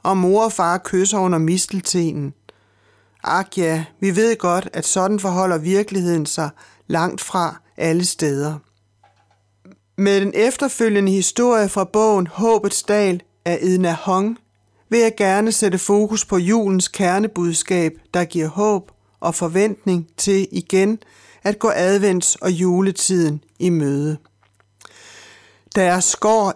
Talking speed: 130 wpm